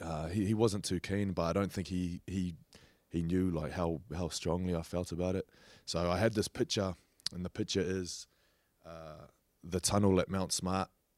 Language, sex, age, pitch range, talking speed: English, male, 20-39, 85-100 Hz, 200 wpm